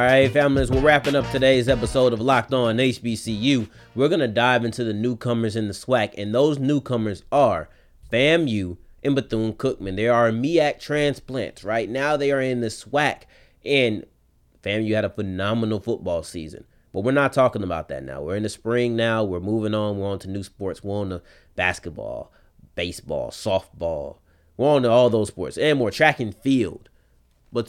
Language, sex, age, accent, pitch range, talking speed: English, male, 30-49, American, 100-130 Hz, 185 wpm